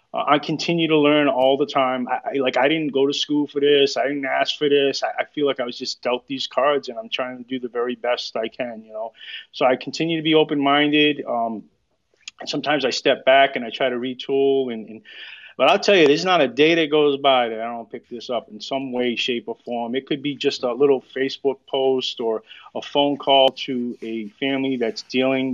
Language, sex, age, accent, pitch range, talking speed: English, male, 30-49, American, 125-145 Hz, 240 wpm